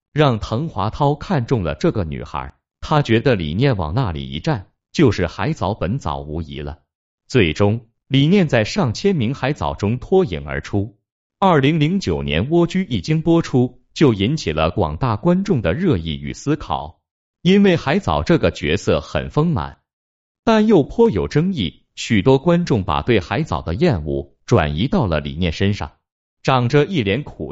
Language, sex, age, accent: Chinese, male, 30-49, native